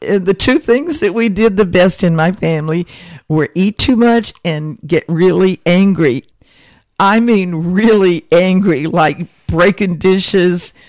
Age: 60-79